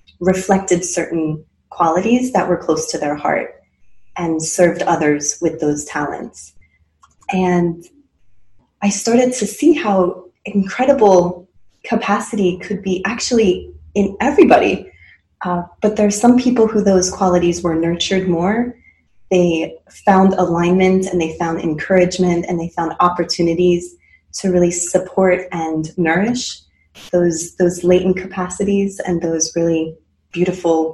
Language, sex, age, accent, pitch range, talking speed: English, female, 20-39, American, 165-200 Hz, 125 wpm